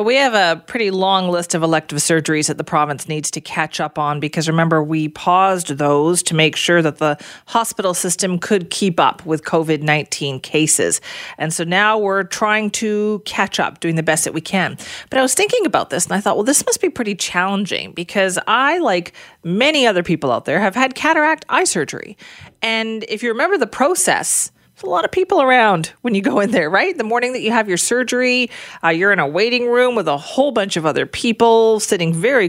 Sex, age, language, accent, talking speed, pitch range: female, 40-59, English, American, 215 wpm, 160-230 Hz